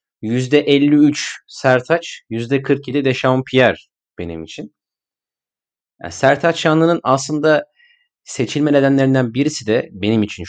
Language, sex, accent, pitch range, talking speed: Turkish, male, native, 100-135 Hz, 95 wpm